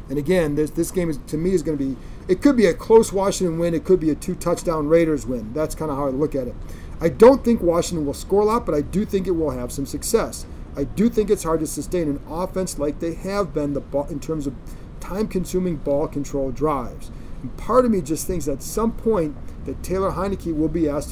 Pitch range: 140-180 Hz